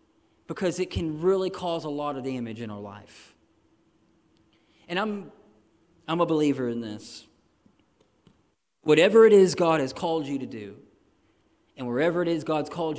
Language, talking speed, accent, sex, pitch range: English, 155 wpm, American, male, 130-190 Hz